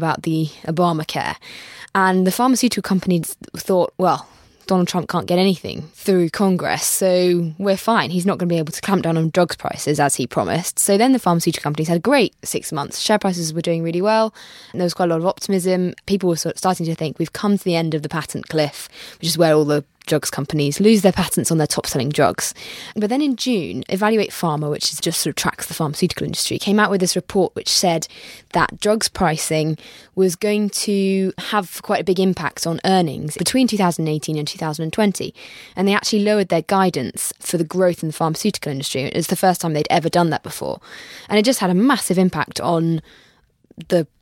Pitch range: 160-195 Hz